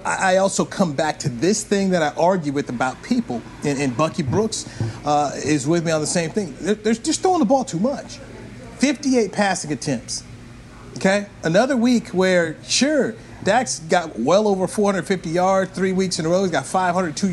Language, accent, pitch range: English, American, 145-195 Hz